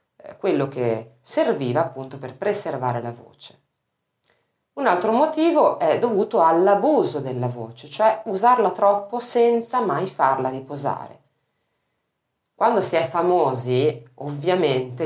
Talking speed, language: 110 wpm, Italian